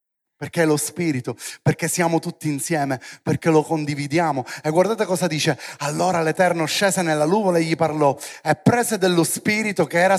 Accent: native